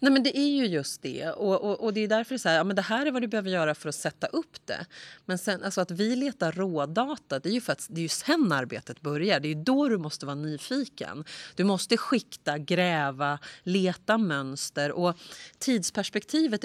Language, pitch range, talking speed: Swedish, 150-215 Hz, 235 wpm